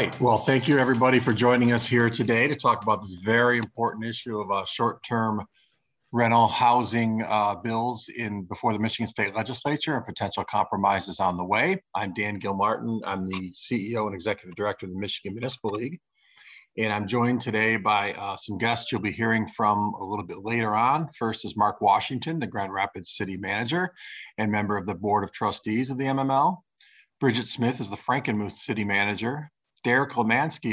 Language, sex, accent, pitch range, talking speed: English, male, American, 105-130 Hz, 185 wpm